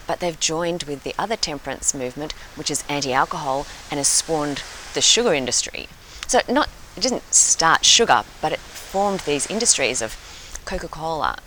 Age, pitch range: 30-49, 140-180 Hz